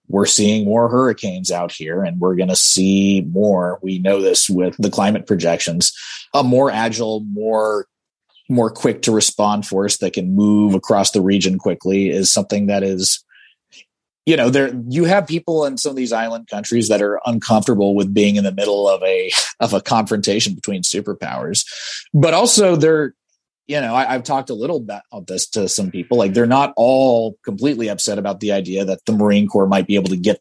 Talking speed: 195 wpm